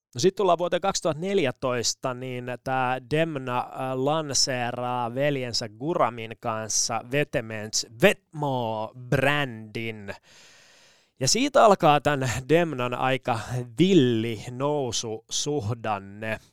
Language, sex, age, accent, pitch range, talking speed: Finnish, male, 20-39, native, 115-145 Hz, 80 wpm